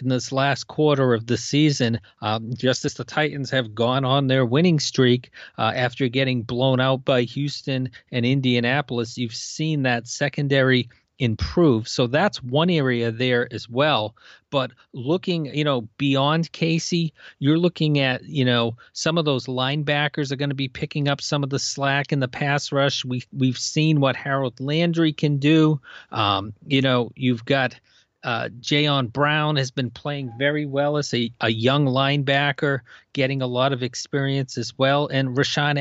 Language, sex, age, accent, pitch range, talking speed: English, male, 40-59, American, 125-150 Hz, 170 wpm